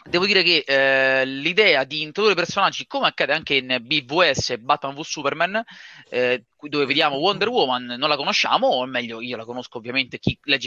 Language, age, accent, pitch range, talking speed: Italian, 20-39, native, 130-175 Hz, 180 wpm